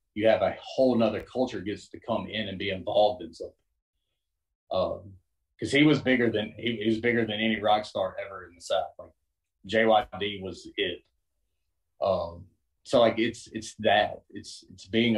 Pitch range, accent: 85-110 Hz, American